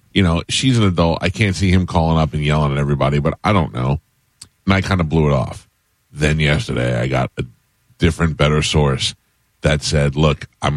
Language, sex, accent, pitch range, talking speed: English, male, American, 75-85 Hz, 210 wpm